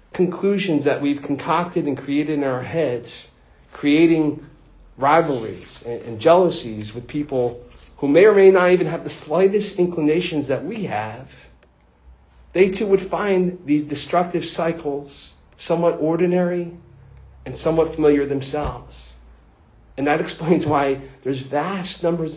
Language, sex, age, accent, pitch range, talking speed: English, male, 40-59, American, 115-150 Hz, 130 wpm